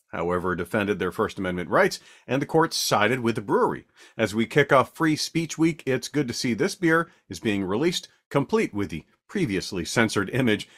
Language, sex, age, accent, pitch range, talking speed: English, male, 40-59, American, 105-150 Hz, 195 wpm